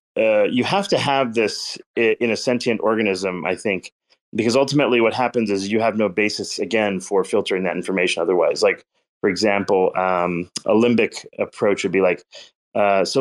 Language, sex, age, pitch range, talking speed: English, male, 30-49, 95-125 Hz, 175 wpm